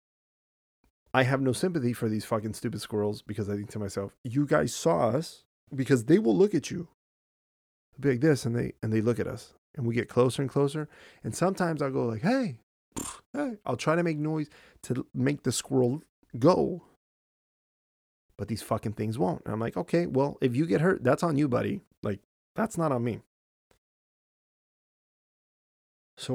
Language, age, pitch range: English, 30-49, 105-145 Hz